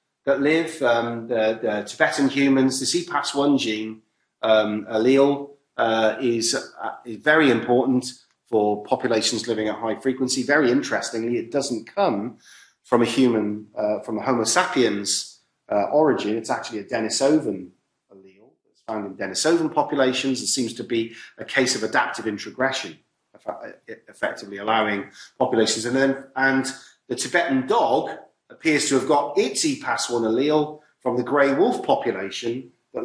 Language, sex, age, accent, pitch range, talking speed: English, male, 30-49, British, 110-140 Hz, 145 wpm